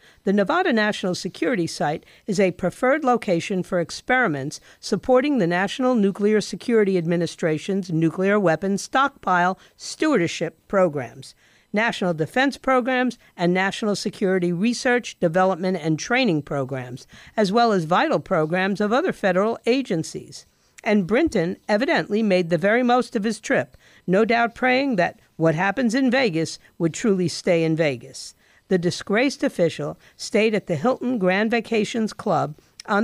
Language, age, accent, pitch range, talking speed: English, 50-69, American, 175-240 Hz, 140 wpm